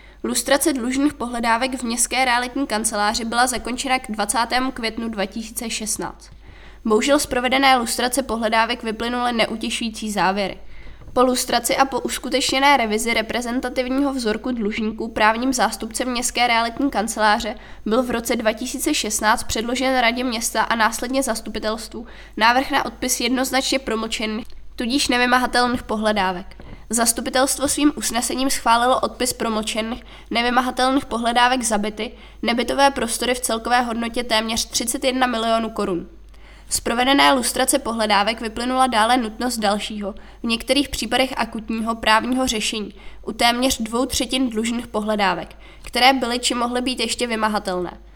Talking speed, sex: 120 wpm, female